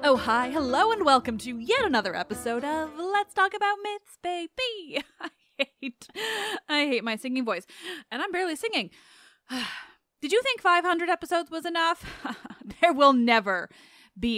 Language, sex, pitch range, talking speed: English, female, 230-340 Hz, 155 wpm